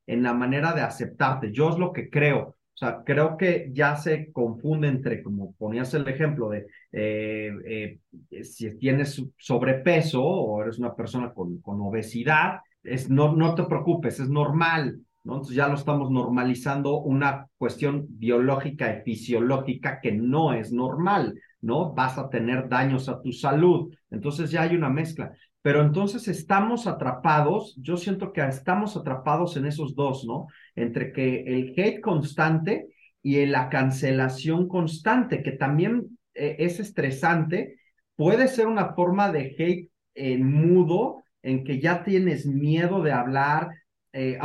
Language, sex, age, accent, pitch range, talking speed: English, male, 40-59, Mexican, 130-170 Hz, 155 wpm